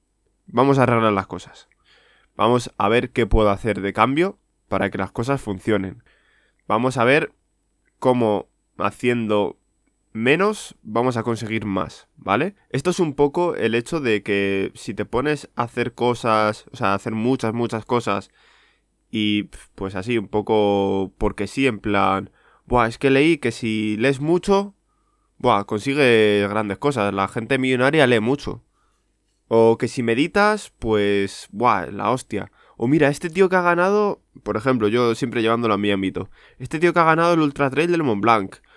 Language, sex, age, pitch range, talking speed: Spanish, male, 20-39, 105-135 Hz, 170 wpm